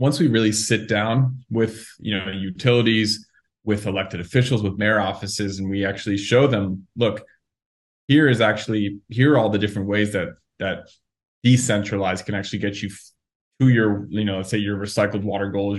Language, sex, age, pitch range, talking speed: English, male, 20-39, 100-115 Hz, 180 wpm